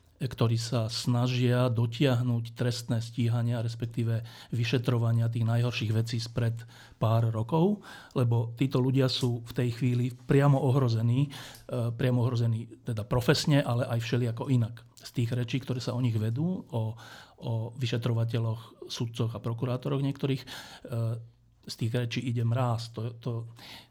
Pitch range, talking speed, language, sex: 115-130 Hz, 135 wpm, Slovak, male